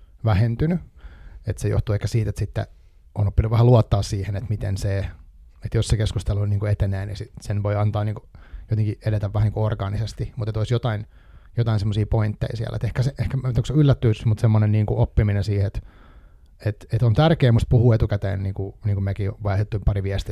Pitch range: 100-120 Hz